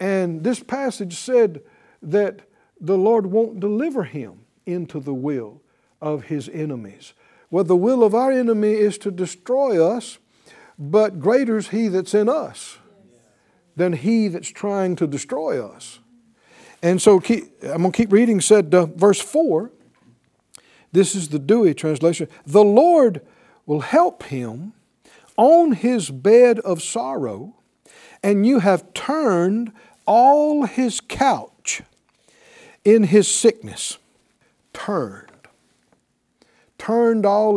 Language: English